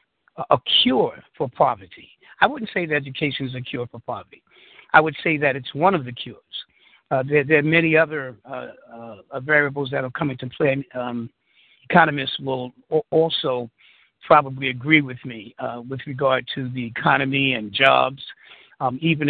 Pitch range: 125-150 Hz